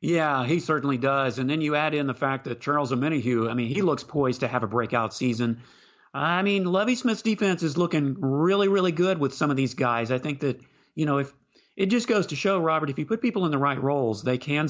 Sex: male